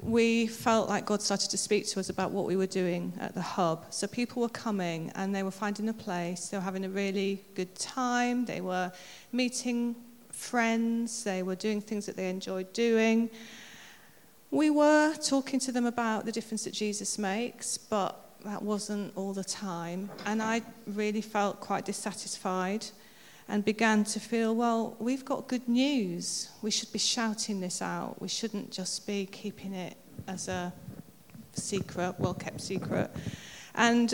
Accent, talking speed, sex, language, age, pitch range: British, 170 wpm, female, English, 40-59, 190-235 Hz